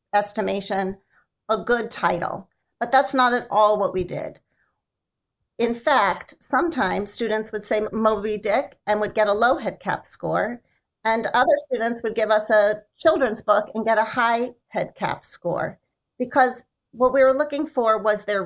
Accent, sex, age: American, female, 40-59